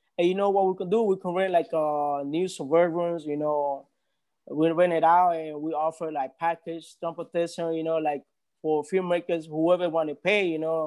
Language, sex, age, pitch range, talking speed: English, male, 20-39, 160-200 Hz, 210 wpm